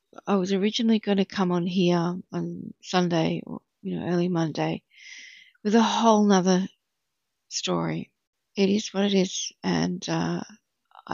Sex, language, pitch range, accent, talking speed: female, English, 175-210 Hz, Australian, 145 wpm